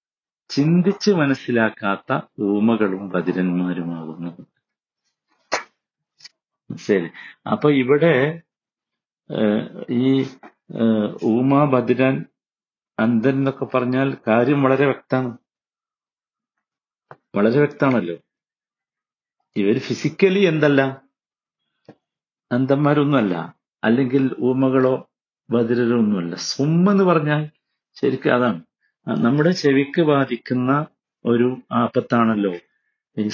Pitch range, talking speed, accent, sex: 120-170 Hz, 65 wpm, native, male